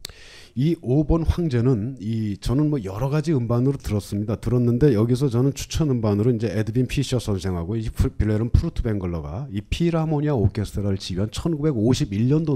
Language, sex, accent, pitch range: Korean, male, native, 100-140 Hz